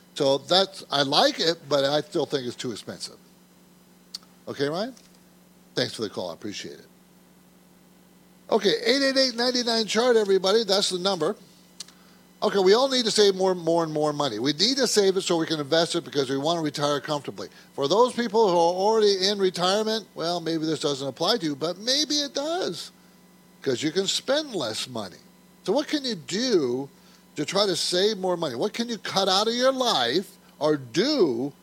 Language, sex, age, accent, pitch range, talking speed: English, male, 50-69, American, 155-230 Hz, 190 wpm